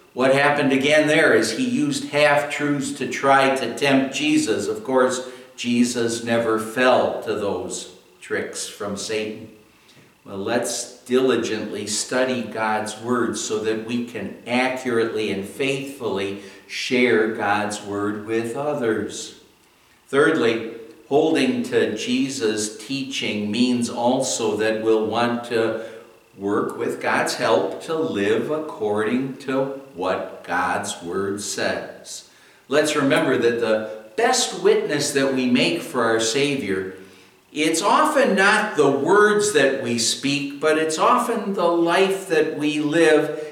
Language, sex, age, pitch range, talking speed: English, male, 60-79, 115-170 Hz, 125 wpm